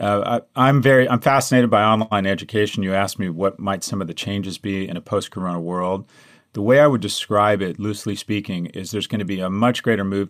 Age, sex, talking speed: 30-49, male, 235 wpm